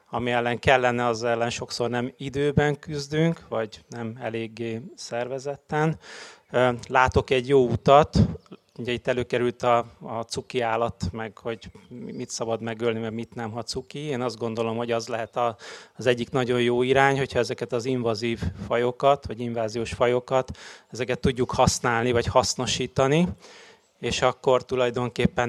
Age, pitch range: 30-49, 115-130 Hz